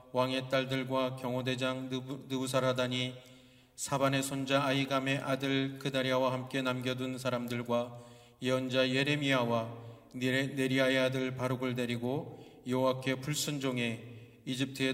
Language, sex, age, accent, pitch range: Korean, male, 40-59, native, 120-135 Hz